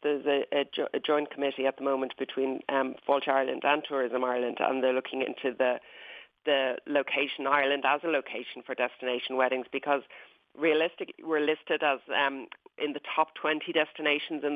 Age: 40-59